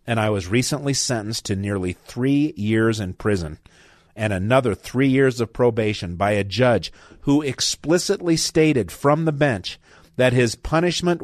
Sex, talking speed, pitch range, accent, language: male, 155 wpm, 95-135 Hz, American, English